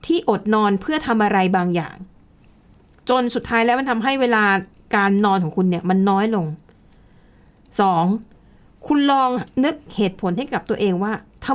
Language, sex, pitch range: Thai, female, 200-255 Hz